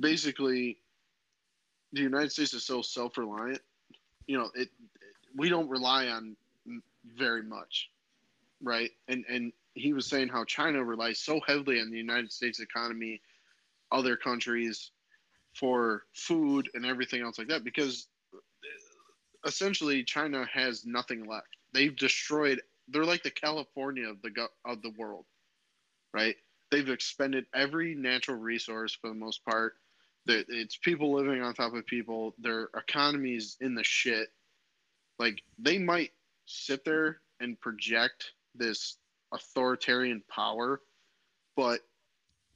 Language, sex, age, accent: English, male, 20-39, American